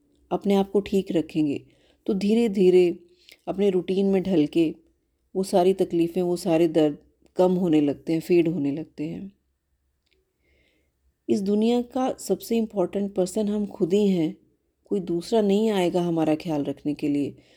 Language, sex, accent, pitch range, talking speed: Hindi, female, native, 150-205 Hz, 155 wpm